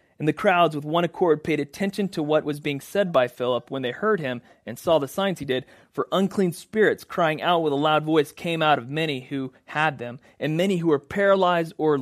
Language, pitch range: English, 135-165 Hz